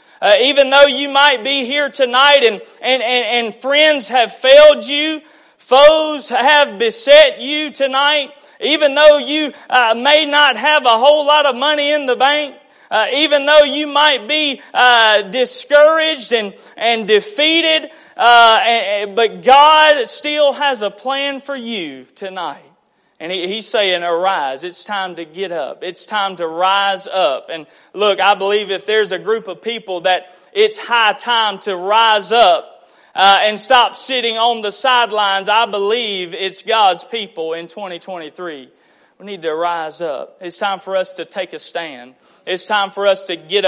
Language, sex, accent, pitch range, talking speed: English, male, American, 190-290 Hz, 165 wpm